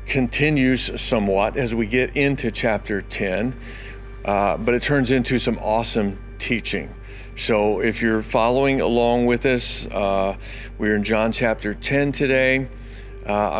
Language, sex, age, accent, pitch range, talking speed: English, male, 50-69, American, 105-120 Hz, 135 wpm